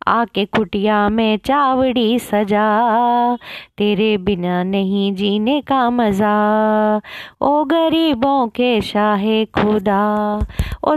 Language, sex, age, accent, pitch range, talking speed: Hindi, female, 20-39, native, 215-300 Hz, 95 wpm